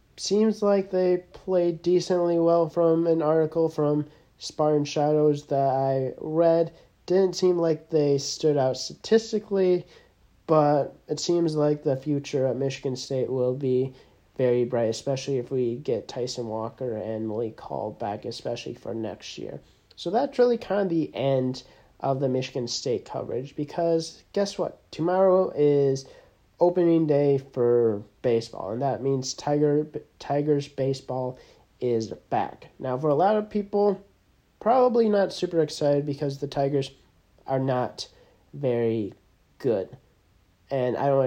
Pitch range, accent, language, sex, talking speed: 130-170 Hz, American, English, male, 145 wpm